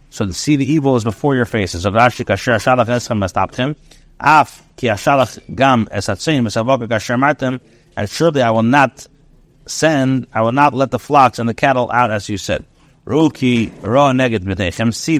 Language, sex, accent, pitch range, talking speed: English, male, American, 120-150 Hz, 115 wpm